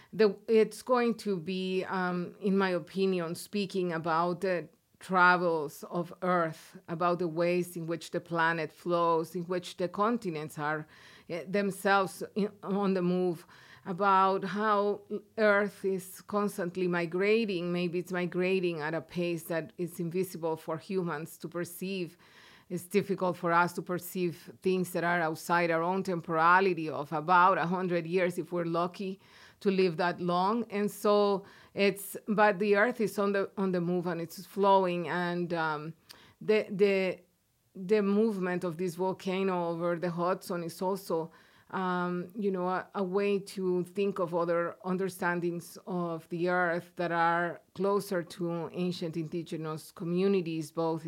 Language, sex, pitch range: English, female, 170-195 Hz